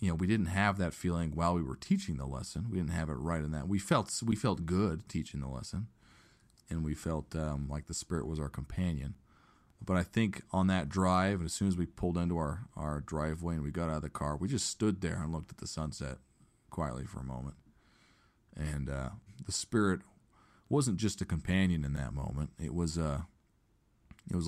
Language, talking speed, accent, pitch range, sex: English, 220 wpm, American, 75-90 Hz, male